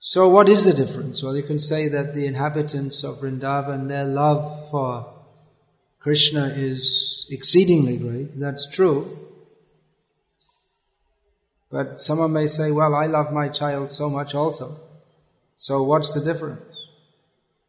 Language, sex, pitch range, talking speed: English, male, 140-155 Hz, 135 wpm